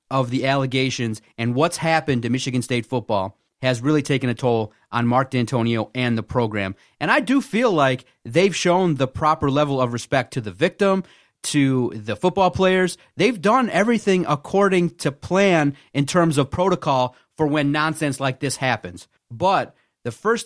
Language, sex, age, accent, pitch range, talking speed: English, male, 30-49, American, 120-150 Hz, 175 wpm